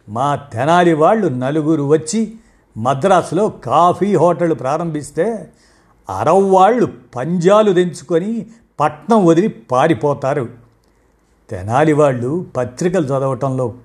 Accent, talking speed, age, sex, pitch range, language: native, 80 wpm, 50-69, male, 130-170 Hz, Telugu